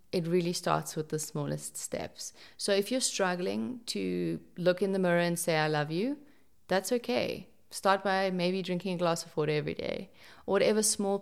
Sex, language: female, English